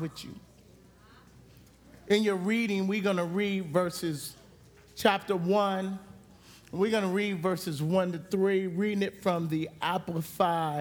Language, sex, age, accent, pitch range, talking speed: English, male, 40-59, American, 160-200 Hz, 135 wpm